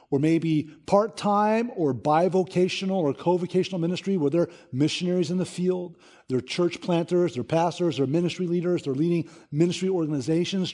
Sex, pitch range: male, 150-195 Hz